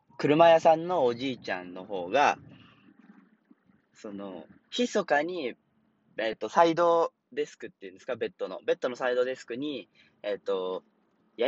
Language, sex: Japanese, male